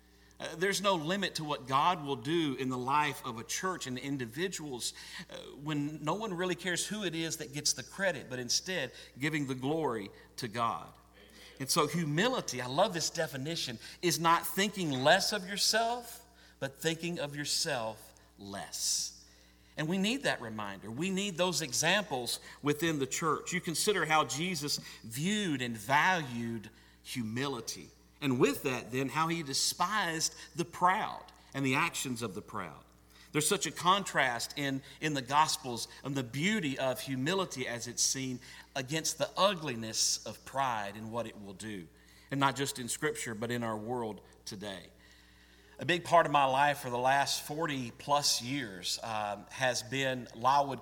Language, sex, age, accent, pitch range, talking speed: English, male, 50-69, American, 120-165 Hz, 165 wpm